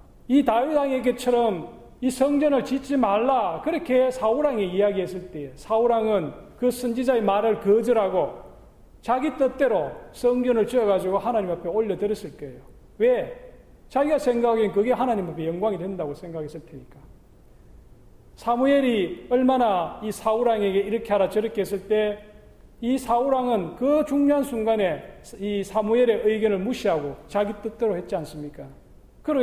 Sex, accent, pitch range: male, native, 195-255 Hz